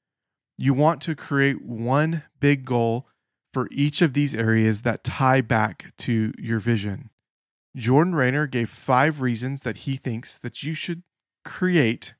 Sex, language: male, English